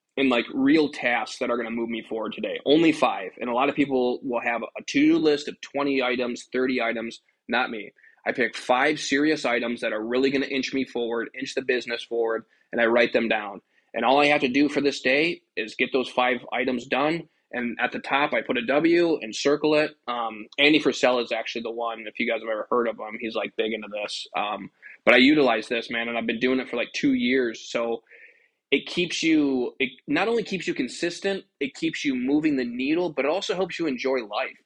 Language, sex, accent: English, male, American